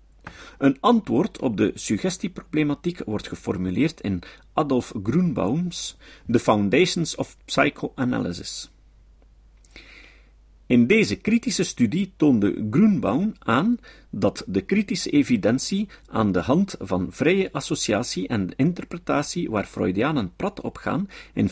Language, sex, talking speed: Dutch, male, 110 wpm